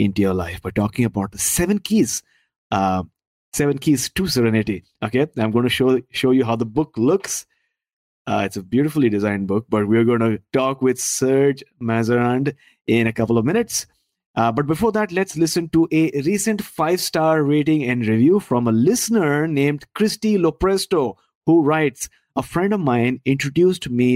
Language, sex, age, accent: English, male, 30-49, Indian